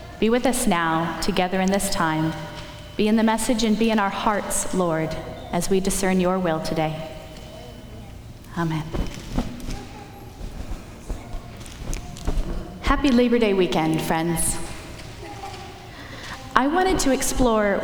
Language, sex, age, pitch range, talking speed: English, female, 20-39, 165-225 Hz, 115 wpm